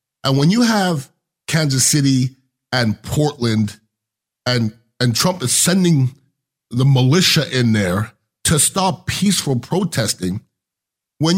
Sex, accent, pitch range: male, American, 120-170 Hz